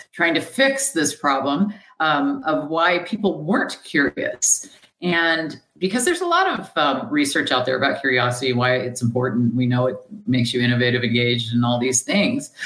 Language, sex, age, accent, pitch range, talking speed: English, female, 50-69, American, 135-215 Hz, 175 wpm